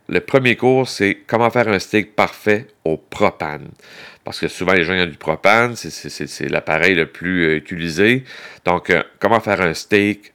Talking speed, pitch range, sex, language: 180 wpm, 90-115 Hz, male, French